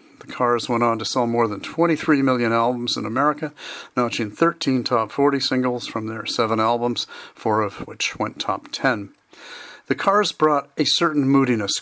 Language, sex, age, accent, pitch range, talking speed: English, male, 40-59, American, 115-145 Hz, 175 wpm